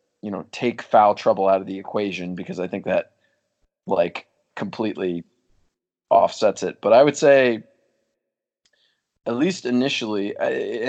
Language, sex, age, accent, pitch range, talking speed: English, male, 20-39, American, 95-120 Hz, 140 wpm